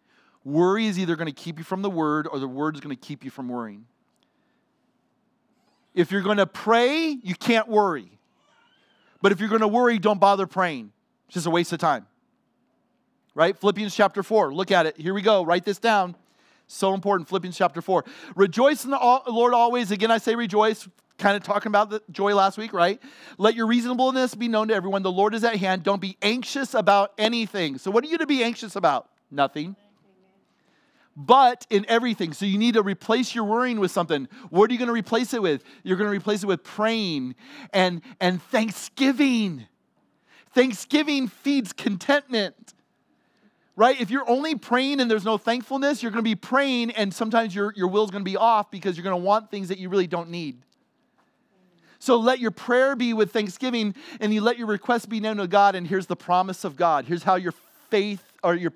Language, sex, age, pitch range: English, male, 40-59, 185-235 Hz